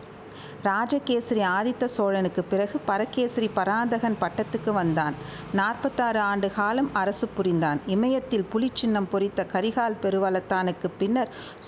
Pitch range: 195-240 Hz